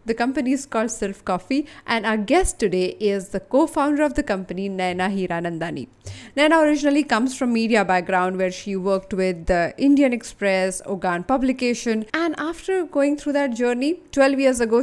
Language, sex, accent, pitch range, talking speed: English, female, Indian, 195-275 Hz, 170 wpm